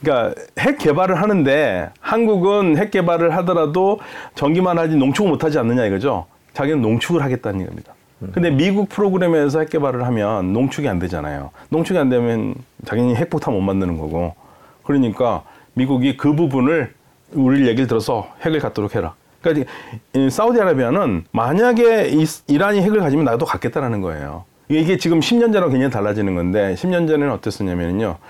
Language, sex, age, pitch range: Korean, male, 40-59, 115-170 Hz